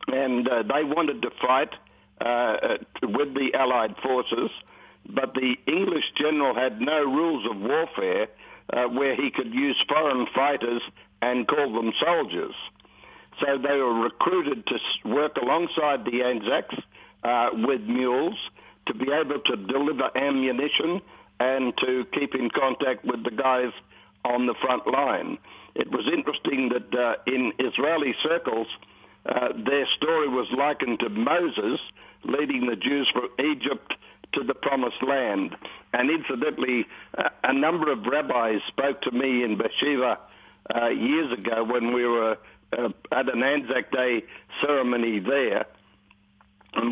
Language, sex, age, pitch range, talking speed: English, male, 60-79, 120-145 Hz, 140 wpm